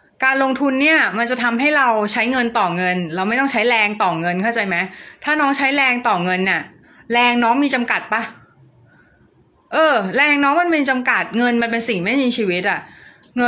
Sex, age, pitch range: female, 20-39, 185-245 Hz